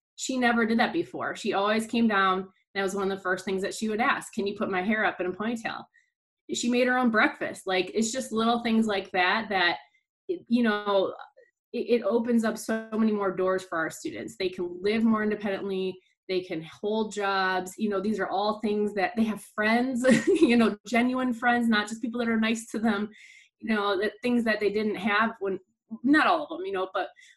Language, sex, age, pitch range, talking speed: English, female, 20-39, 190-235 Hz, 230 wpm